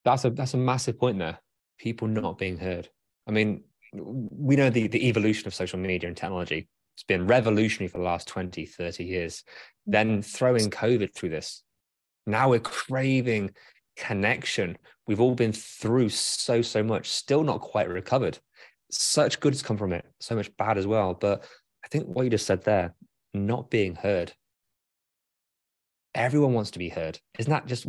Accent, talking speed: British, 175 wpm